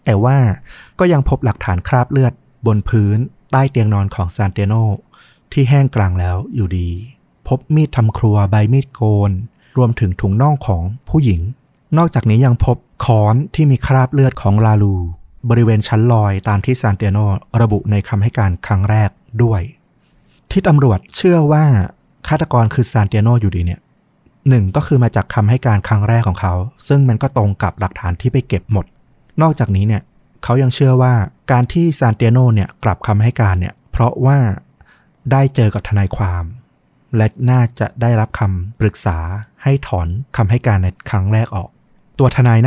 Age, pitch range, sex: 30-49, 100-130 Hz, male